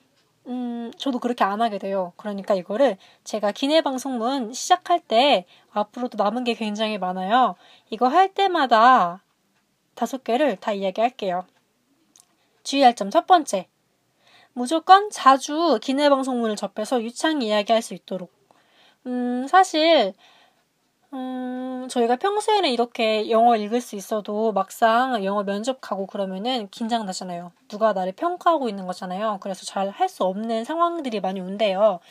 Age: 20-39